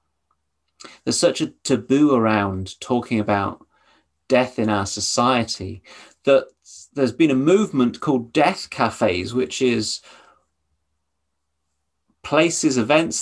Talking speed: 105 wpm